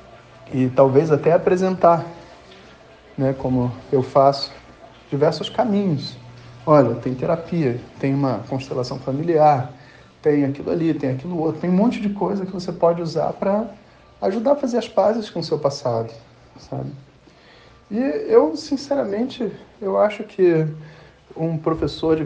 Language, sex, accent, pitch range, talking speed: Portuguese, male, Brazilian, 130-180 Hz, 135 wpm